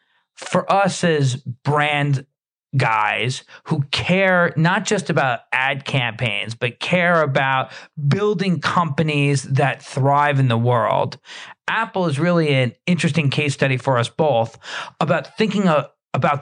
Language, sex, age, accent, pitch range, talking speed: English, male, 40-59, American, 130-170 Hz, 130 wpm